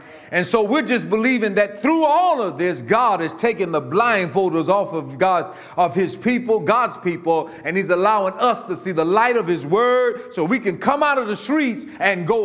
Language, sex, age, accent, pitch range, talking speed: English, male, 50-69, American, 180-240 Hz, 210 wpm